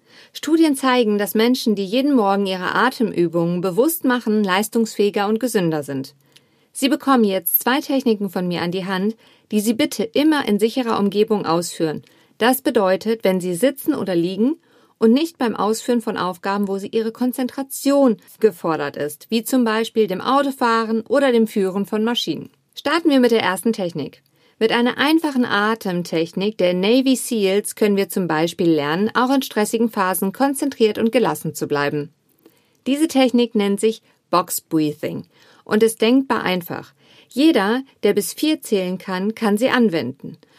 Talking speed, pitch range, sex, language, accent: 160 wpm, 190-245 Hz, female, German, German